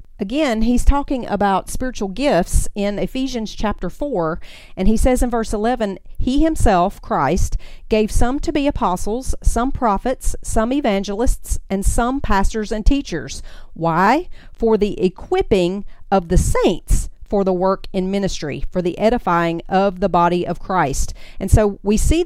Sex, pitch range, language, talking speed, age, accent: female, 185-250 Hz, English, 155 wpm, 40-59, American